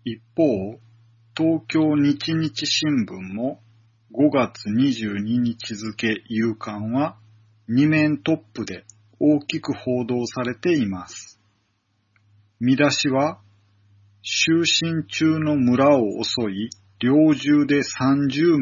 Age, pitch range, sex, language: 40-59, 105-145 Hz, male, Japanese